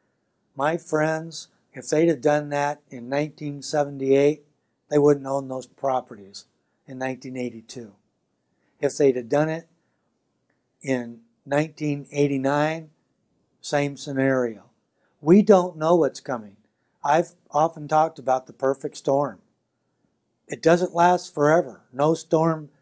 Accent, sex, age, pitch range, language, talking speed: American, male, 60-79, 130-165 Hz, English, 115 wpm